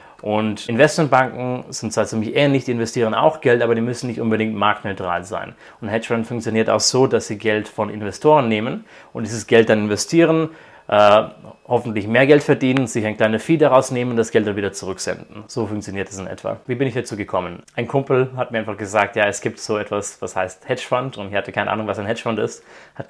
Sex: male